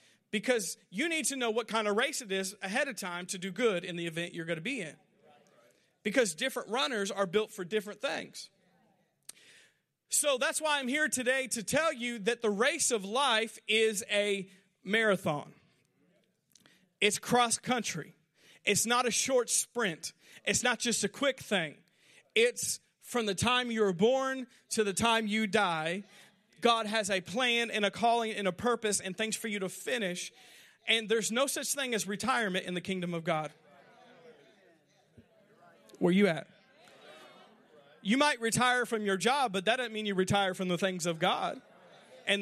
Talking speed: 175 wpm